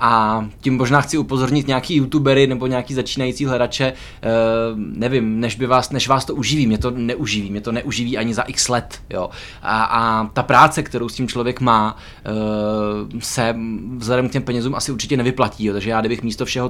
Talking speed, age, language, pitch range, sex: 190 wpm, 20-39, Czech, 110-125 Hz, male